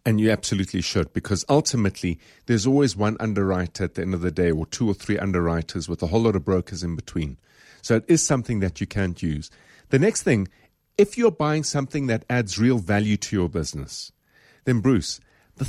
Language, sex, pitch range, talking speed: English, male, 95-135 Hz, 205 wpm